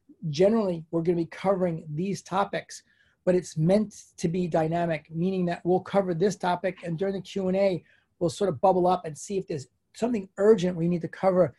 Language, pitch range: English, 175-210 Hz